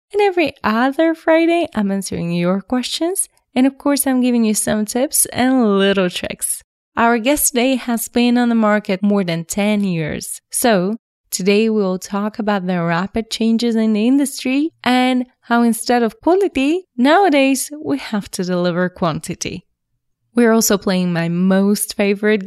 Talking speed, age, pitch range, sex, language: 160 wpm, 20-39, 195-265 Hz, female, English